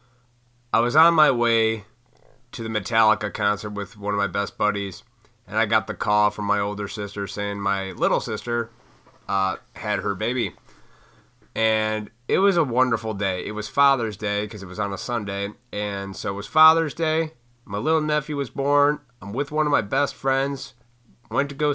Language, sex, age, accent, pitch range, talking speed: English, male, 30-49, American, 105-135 Hz, 190 wpm